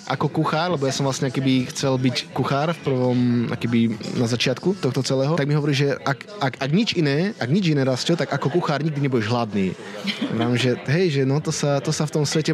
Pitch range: 130-155 Hz